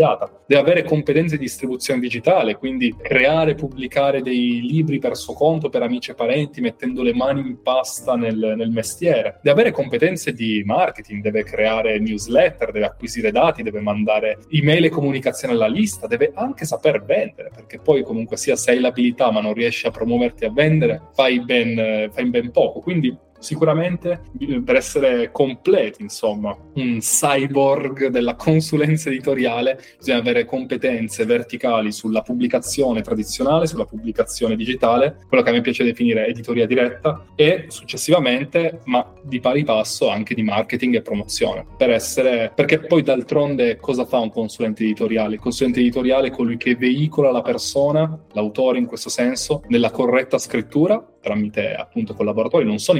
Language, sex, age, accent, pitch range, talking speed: Italian, male, 20-39, native, 115-155 Hz, 155 wpm